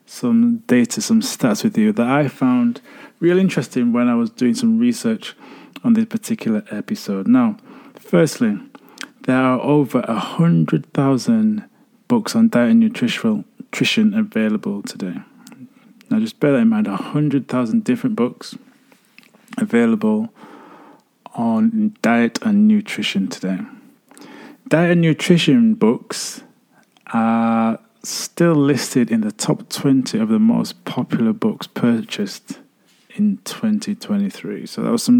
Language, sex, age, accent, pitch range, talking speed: English, male, 20-39, British, 210-240 Hz, 125 wpm